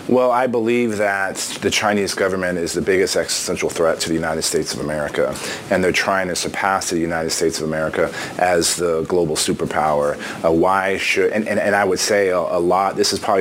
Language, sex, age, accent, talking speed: English, male, 30-49, American, 210 wpm